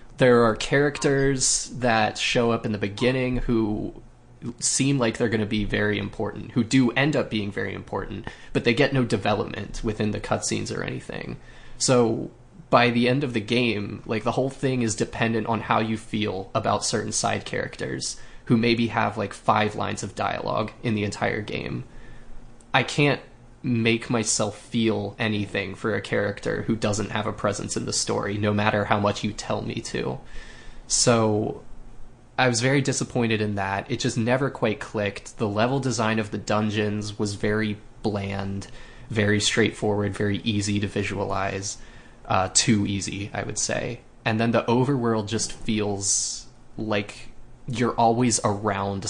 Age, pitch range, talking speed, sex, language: 20-39, 105-120 Hz, 165 wpm, male, English